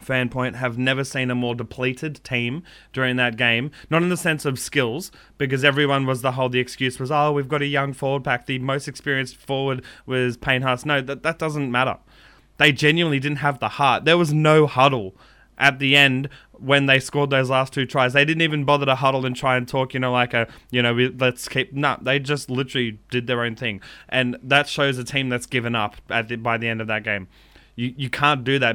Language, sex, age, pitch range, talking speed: English, male, 20-39, 120-140 Hz, 235 wpm